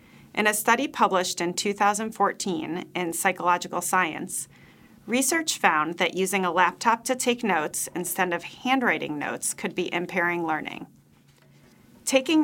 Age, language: 40-59, English